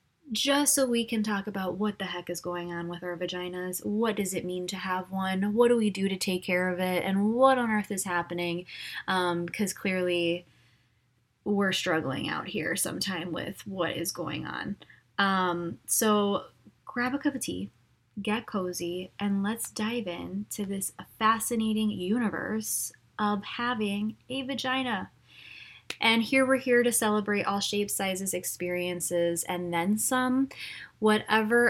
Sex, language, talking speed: female, English, 160 wpm